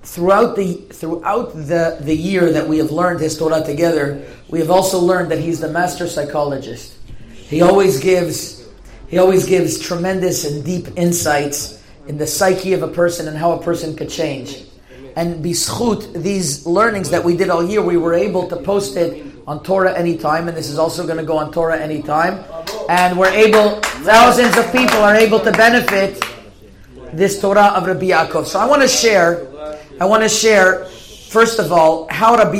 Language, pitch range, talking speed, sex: English, 150-180 Hz, 185 wpm, male